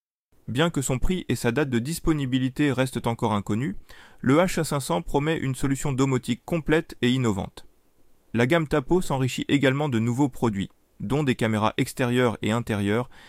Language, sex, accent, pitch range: French, male, French, 115-150 Hz